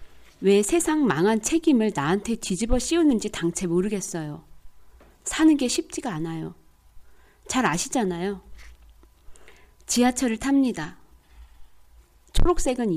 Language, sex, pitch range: Korean, female, 165-245 Hz